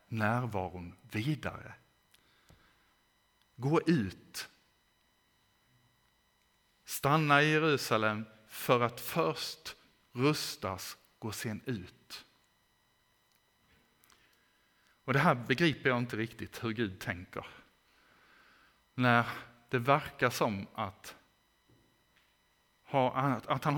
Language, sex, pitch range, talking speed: Swedish, male, 105-140 Hz, 75 wpm